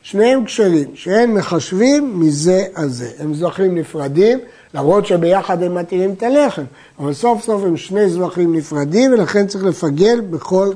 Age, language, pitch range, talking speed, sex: 60-79, Hebrew, 170-225 Hz, 145 wpm, male